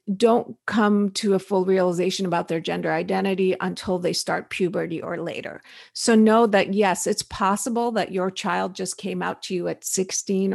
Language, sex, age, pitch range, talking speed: English, female, 50-69, 185-210 Hz, 180 wpm